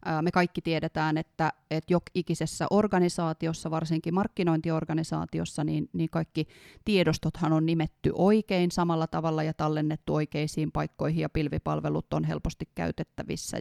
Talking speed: 120 wpm